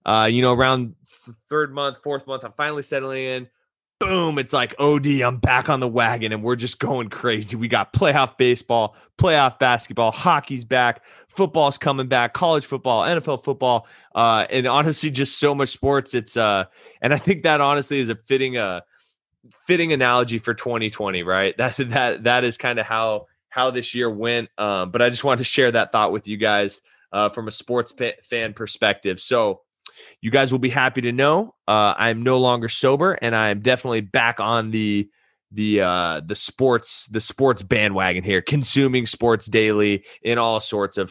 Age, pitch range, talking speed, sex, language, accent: 20-39, 115-140 Hz, 190 wpm, male, English, American